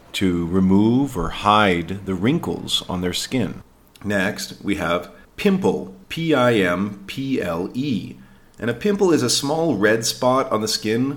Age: 40-59